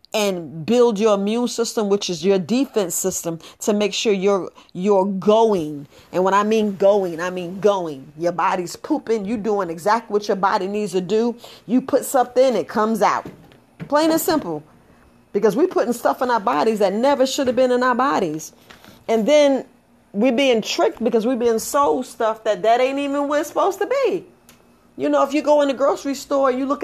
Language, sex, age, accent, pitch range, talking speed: English, female, 40-59, American, 200-260 Hz, 205 wpm